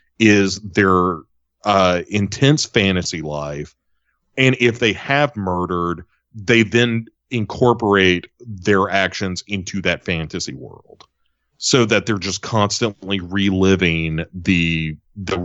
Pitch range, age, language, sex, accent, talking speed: 90-115 Hz, 30-49, English, male, American, 110 wpm